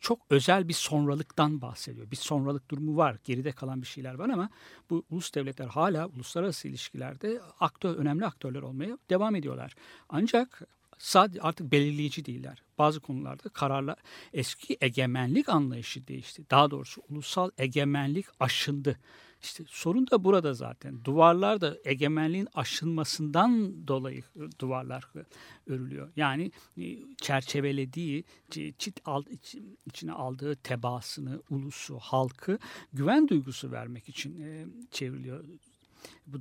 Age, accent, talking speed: 60-79, native, 110 wpm